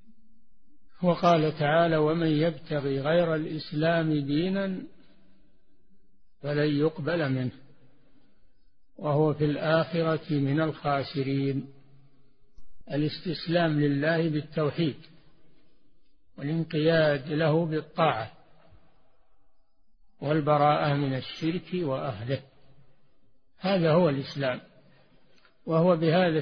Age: 60-79